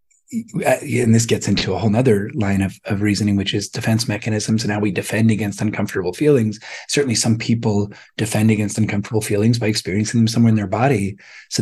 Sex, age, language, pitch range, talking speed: male, 30-49, English, 105-125 Hz, 190 wpm